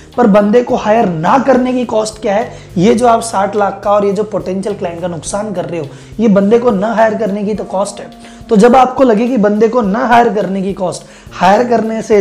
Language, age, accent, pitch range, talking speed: Hindi, 20-39, native, 190-235 Hz, 100 wpm